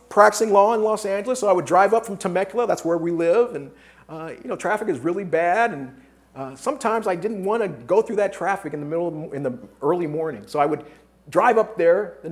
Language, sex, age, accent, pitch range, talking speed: English, male, 40-59, American, 155-245 Hz, 250 wpm